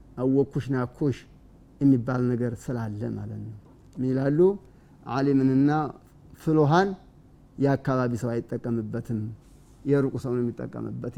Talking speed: 90 wpm